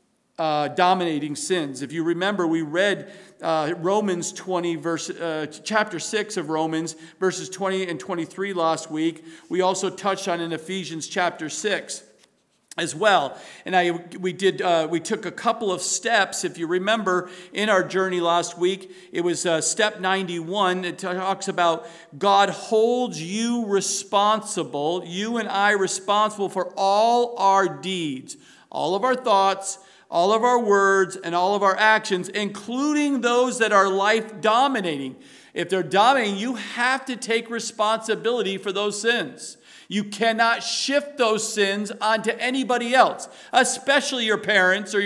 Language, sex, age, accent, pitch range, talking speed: English, male, 50-69, American, 180-220 Hz, 150 wpm